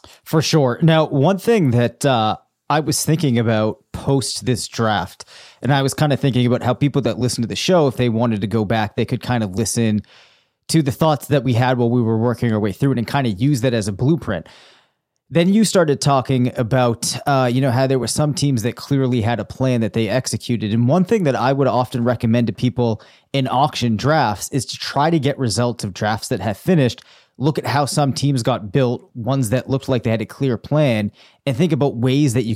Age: 30-49